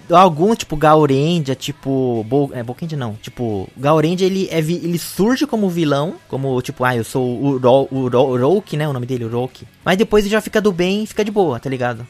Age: 20-39